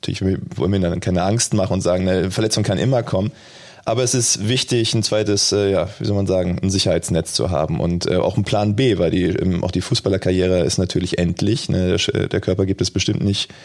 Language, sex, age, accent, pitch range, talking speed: German, male, 20-39, German, 90-105 Hz, 215 wpm